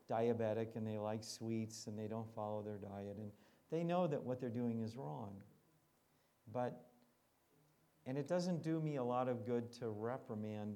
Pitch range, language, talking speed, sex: 105-125 Hz, English, 180 wpm, male